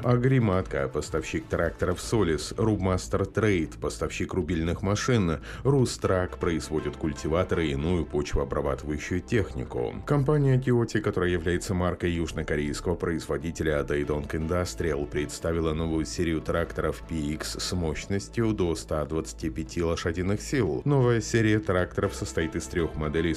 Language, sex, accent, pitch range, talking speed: Russian, male, native, 80-100 Hz, 115 wpm